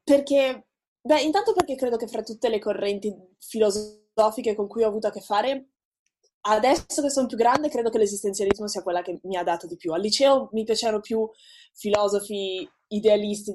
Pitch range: 195-255 Hz